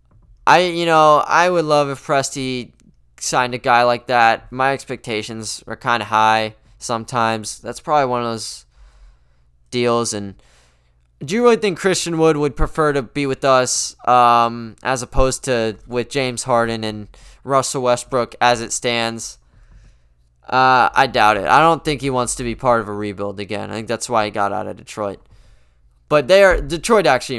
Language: English